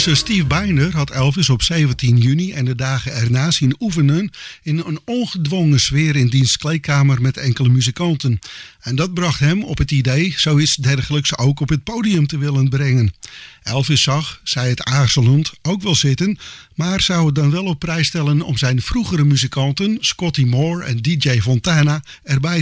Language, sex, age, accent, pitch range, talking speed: English, male, 50-69, Dutch, 135-165 Hz, 175 wpm